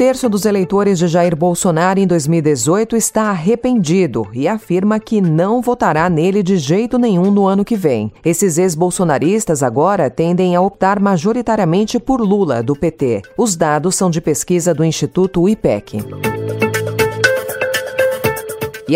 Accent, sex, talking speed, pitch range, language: Brazilian, female, 135 wpm, 155-215 Hz, Portuguese